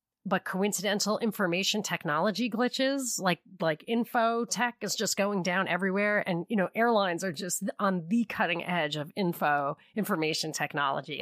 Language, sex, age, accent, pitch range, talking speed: English, female, 30-49, American, 170-225 Hz, 150 wpm